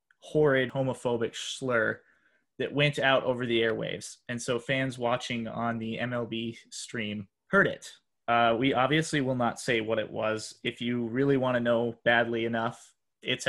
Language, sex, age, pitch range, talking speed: English, male, 20-39, 120-145 Hz, 165 wpm